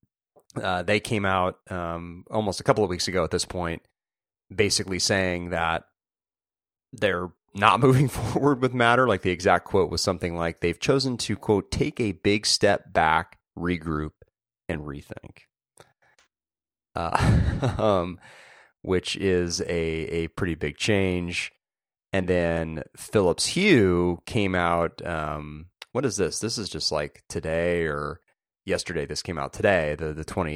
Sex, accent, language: male, American, English